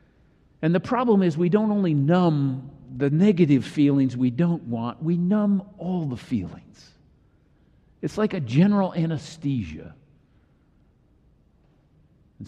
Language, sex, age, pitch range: English, male, 50-69, 120-175 Hz